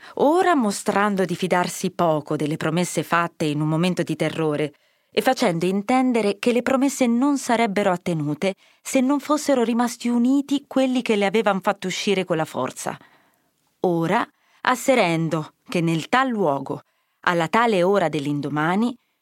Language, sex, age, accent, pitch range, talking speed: Italian, female, 20-39, native, 160-225 Hz, 145 wpm